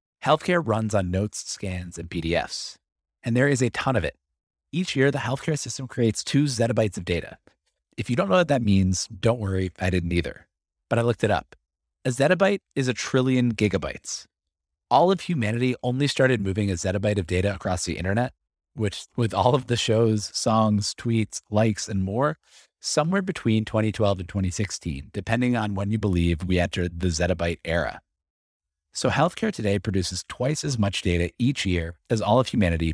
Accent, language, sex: American, English, male